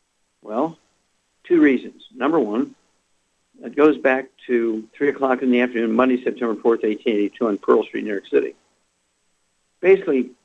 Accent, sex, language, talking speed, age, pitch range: American, male, English, 145 wpm, 50-69, 115-140 Hz